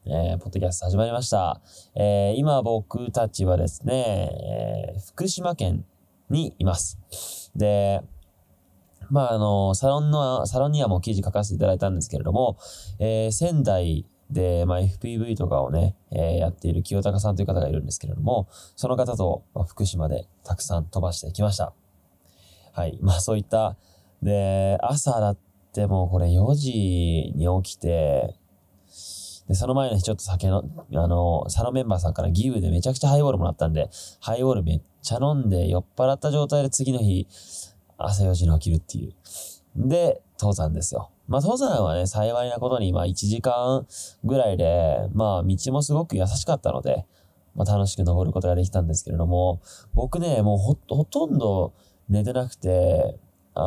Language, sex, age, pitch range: Japanese, male, 20-39, 90-115 Hz